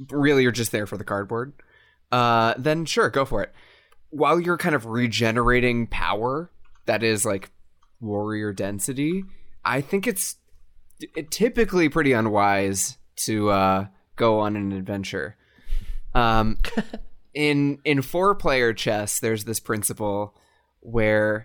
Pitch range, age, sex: 100-135 Hz, 20-39, male